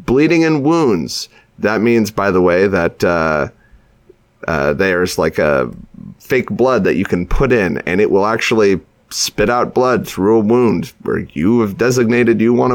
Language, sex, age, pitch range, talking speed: English, male, 30-49, 110-150 Hz, 175 wpm